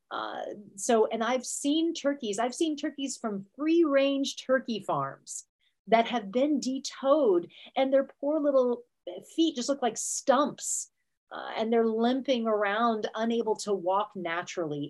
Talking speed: 145 wpm